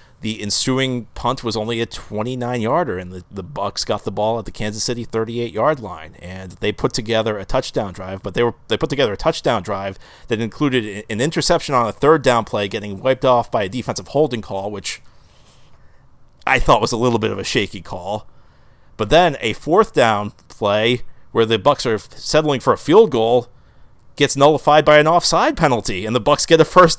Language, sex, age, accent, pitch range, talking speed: English, male, 40-59, American, 110-150 Hz, 200 wpm